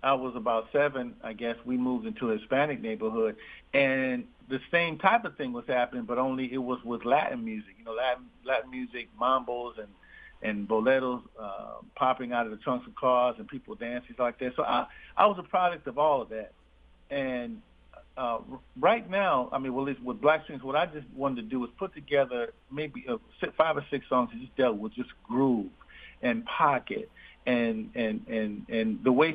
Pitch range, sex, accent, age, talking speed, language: 120-155 Hz, male, American, 50-69, 200 wpm, English